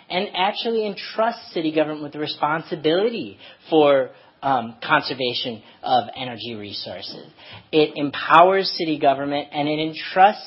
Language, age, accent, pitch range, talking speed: English, 30-49, American, 125-155 Hz, 120 wpm